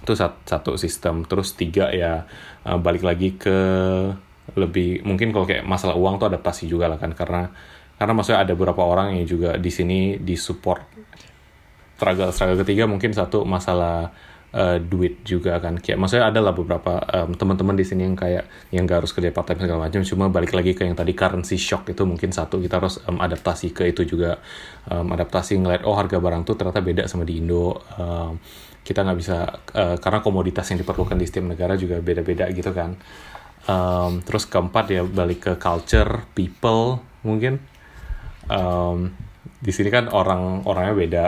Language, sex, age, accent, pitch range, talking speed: Indonesian, male, 20-39, native, 85-95 Hz, 175 wpm